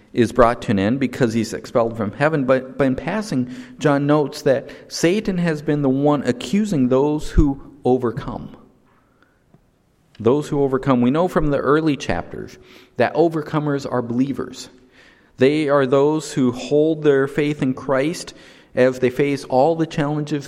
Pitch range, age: 125-150 Hz, 50-69